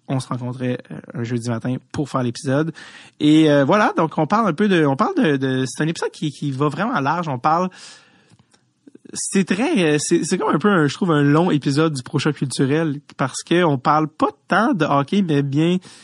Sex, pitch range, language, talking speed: male, 135-170 Hz, English, 220 wpm